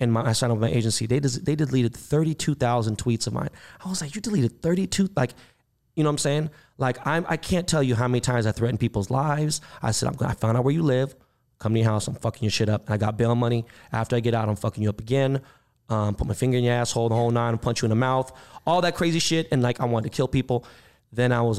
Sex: male